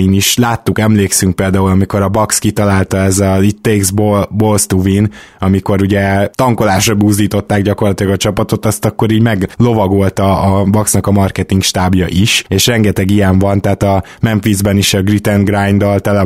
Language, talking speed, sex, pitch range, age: Hungarian, 170 wpm, male, 95-115 Hz, 20-39